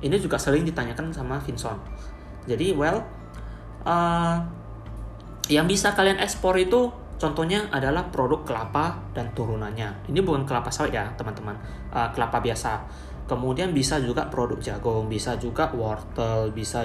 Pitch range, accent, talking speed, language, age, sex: 110-145 Hz, native, 135 wpm, Indonesian, 20-39, male